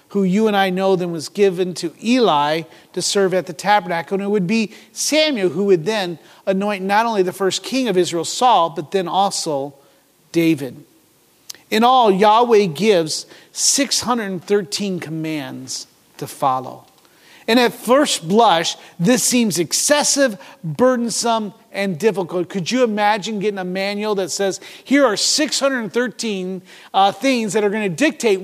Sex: male